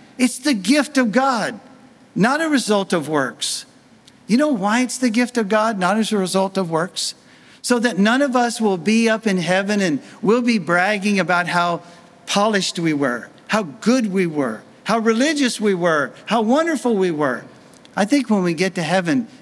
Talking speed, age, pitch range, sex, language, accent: 190 wpm, 50-69, 175-240 Hz, male, English, American